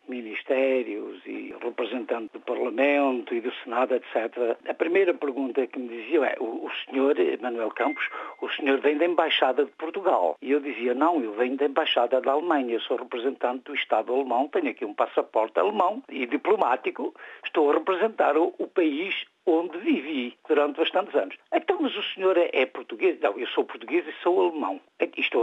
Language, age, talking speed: Portuguese, 60-79, 175 wpm